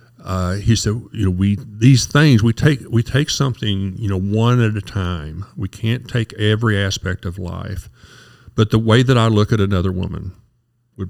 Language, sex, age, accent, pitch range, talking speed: English, male, 50-69, American, 95-120 Hz, 195 wpm